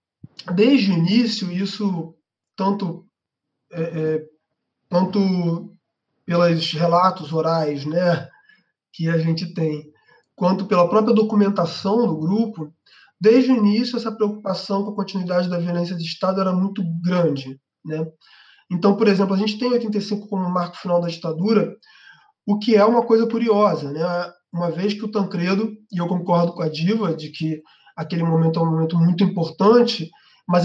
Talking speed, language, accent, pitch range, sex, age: 150 wpm, Portuguese, Brazilian, 170-215 Hz, male, 20-39